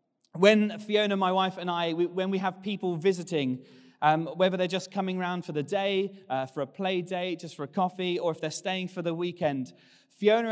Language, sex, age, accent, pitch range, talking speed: English, male, 30-49, British, 165-210 Hz, 210 wpm